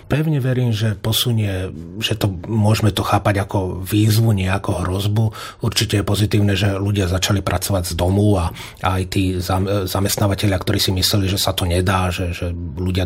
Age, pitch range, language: 30-49, 95-110 Hz, Slovak